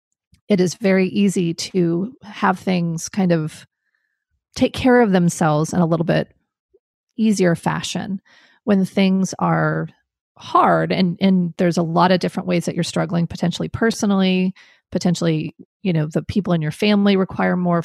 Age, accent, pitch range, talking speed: 30-49, American, 175-220 Hz, 155 wpm